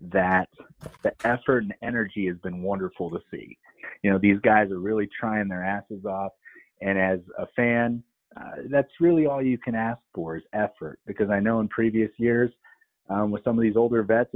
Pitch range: 100-125 Hz